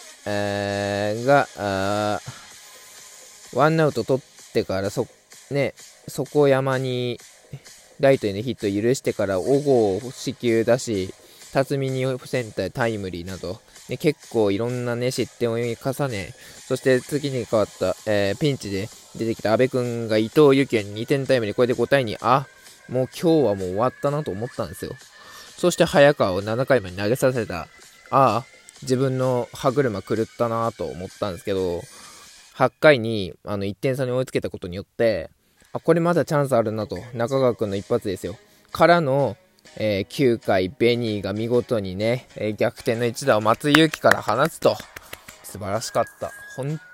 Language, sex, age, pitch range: Japanese, male, 20-39, 105-135 Hz